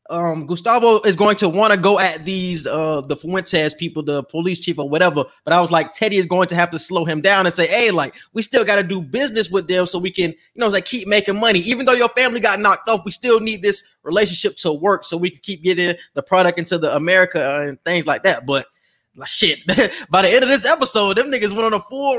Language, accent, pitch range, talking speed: English, American, 165-215 Hz, 255 wpm